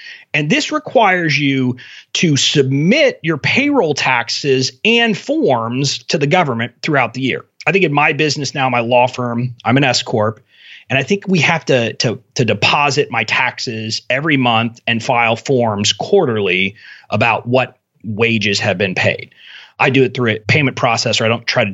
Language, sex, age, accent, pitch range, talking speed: English, male, 30-49, American, 115-160 Hz, 175 wpm